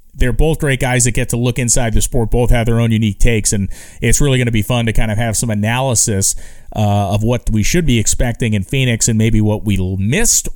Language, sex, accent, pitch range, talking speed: English, male, American, 110-145 Hz, 250 wpm